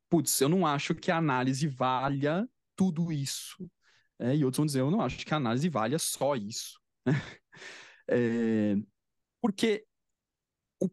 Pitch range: 135-190 Hz